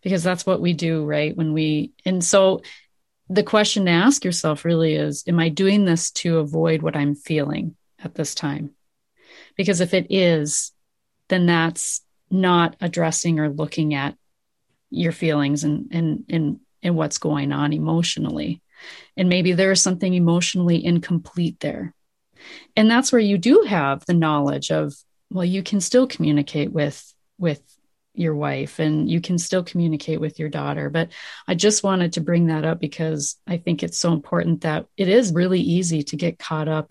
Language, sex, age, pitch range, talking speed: English, female, 30-49, 155-190 Hz, 175 wpm